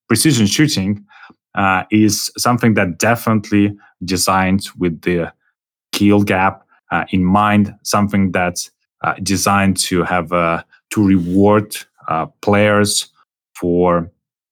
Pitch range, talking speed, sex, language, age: 95-110 Hz, 110 wpm, male, English, 30-49